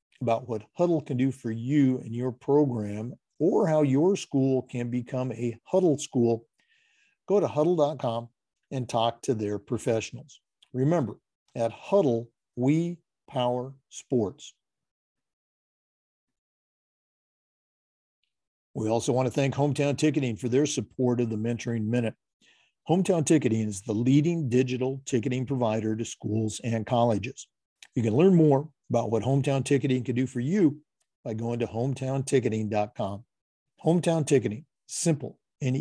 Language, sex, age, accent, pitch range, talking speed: English, male, 50-69, American, 120-150 Hz, 130 wpm